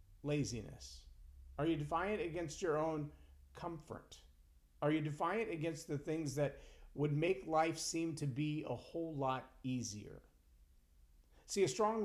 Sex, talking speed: male, 140 wpm